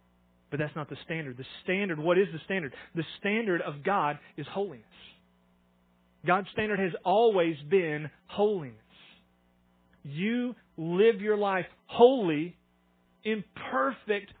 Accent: American